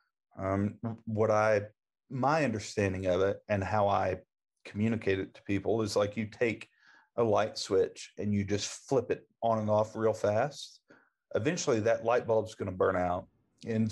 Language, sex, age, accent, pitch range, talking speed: English, male, 40-59, American, 105-125 Hz, 175 wpm